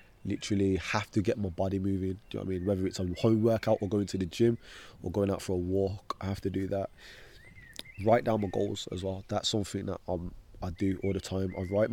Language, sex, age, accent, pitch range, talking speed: English, male, 20-39, British, 95-115 Hz, 255 wpm